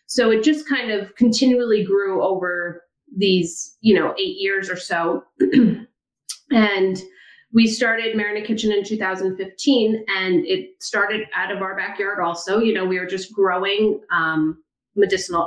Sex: female